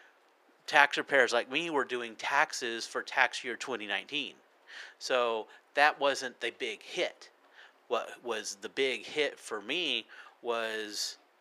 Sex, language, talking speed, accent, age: male, English, 130 wpm, American, 40-59